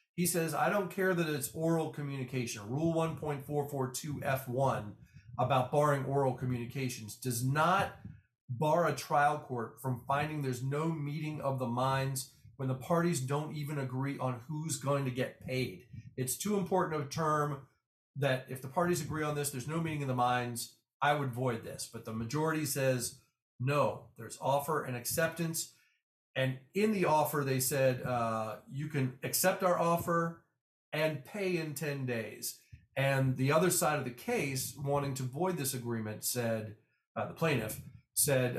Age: 40-59